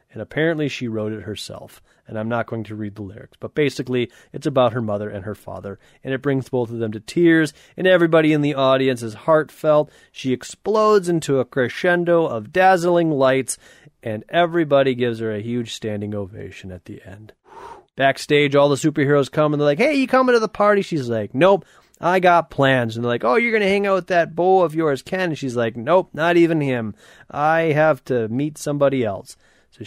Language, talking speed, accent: English, 215 wpm, American